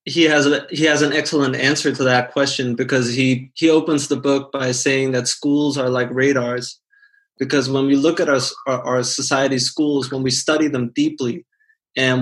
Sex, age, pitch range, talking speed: male, 20-39, 125-145 Hz, 195 wpm